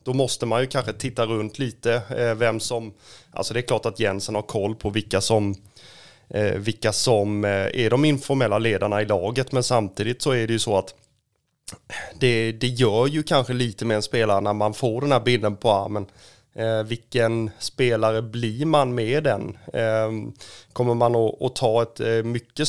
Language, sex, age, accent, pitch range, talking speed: Swedish, male, 30-49, native, 110-125 Hz, 175 wpm